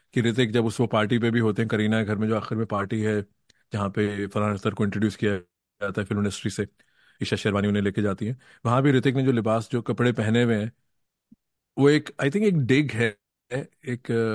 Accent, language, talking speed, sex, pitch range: native, Hindi, 235 wpm, male, 110-135 Hz